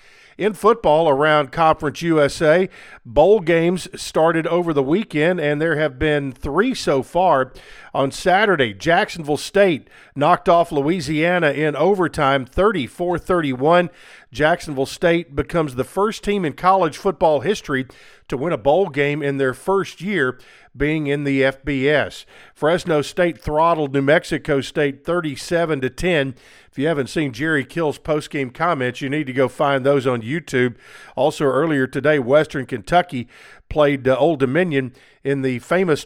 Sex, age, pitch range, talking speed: male, 50-69, 135-175 Hz, 145 wpm